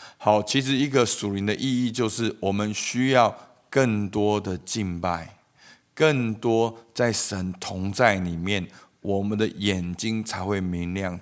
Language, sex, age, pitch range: Chinese, male, 50-69, 95-130 Hz